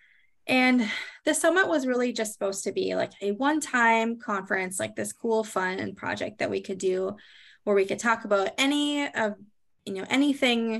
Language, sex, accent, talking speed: English, female, American, 180 wpm